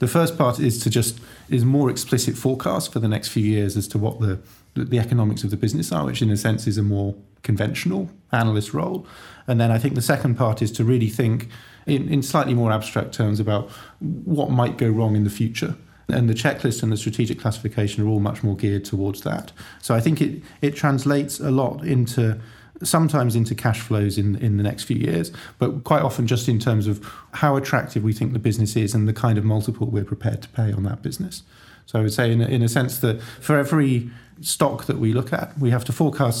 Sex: male